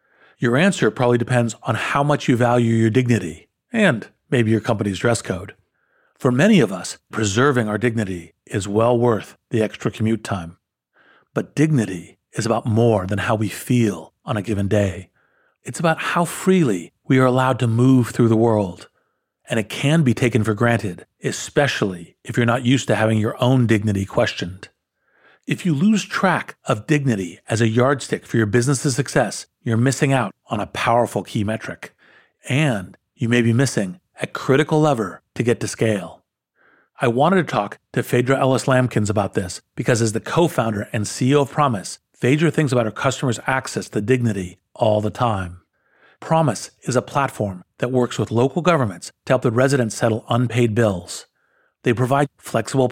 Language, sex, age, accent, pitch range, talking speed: English, male, 50-69, American, 105-130 Hz, 175 wpm